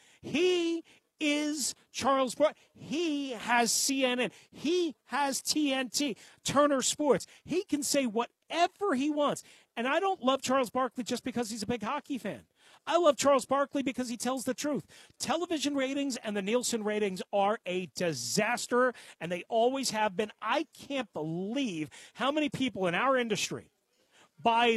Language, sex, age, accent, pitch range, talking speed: English, male, 40-59, American, 205-275 Hz, 155 wpm